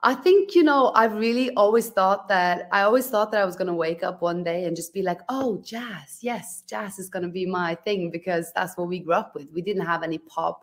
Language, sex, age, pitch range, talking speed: English, female, 20-39, 175-215 Hz, 265 wpm